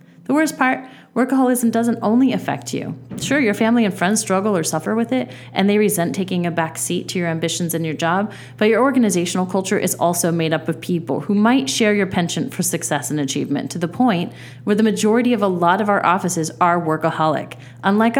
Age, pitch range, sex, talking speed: 30-49, 155-210 Hz, female, 210 wpm